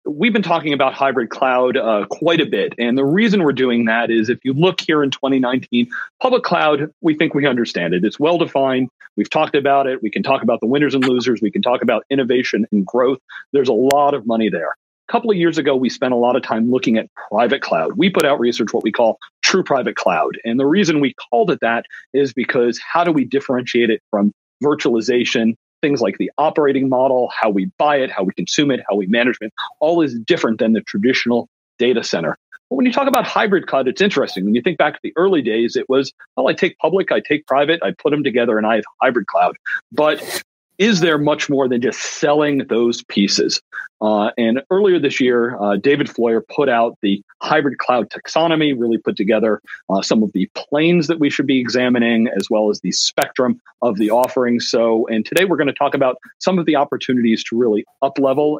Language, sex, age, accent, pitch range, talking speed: English, male, 40-59, American, 115-155 Hz, 225 wpm